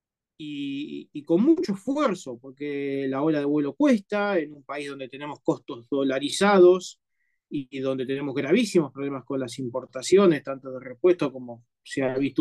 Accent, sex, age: Argentinian, male, 20-39